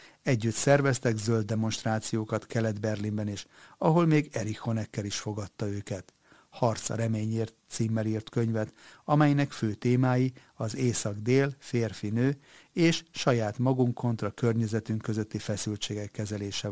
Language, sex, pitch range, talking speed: Hungarian, male, 105-120 Hz, 120 wpm